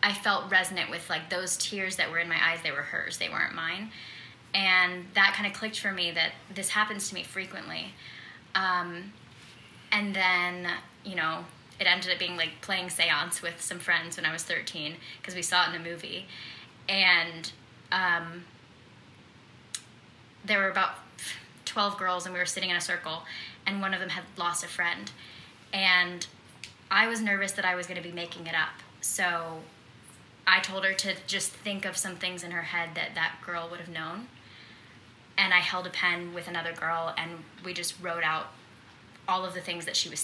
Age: 10-29